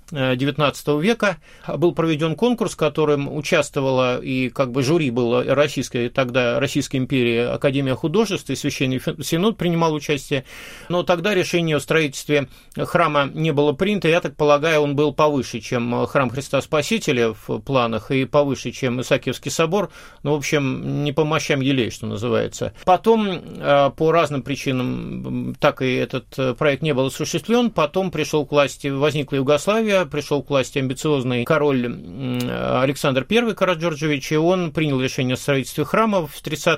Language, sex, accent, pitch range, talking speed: Russian, male, native, 130-165 Hz, 155 wpm